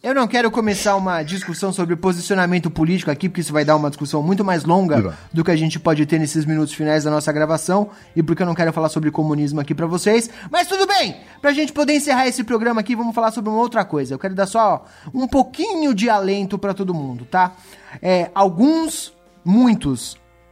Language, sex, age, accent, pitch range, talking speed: Portuguese, male, 20-39, Brazilian, 160-210 Hz, 210 wpm